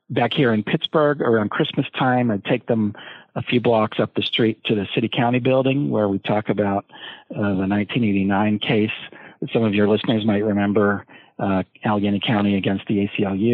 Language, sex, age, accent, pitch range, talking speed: English, male, 50-69, American, 100-125 Hz, 180 wpm